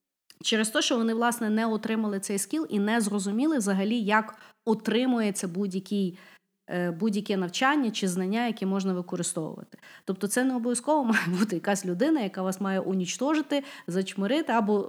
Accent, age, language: native, 30-49, Ukrainian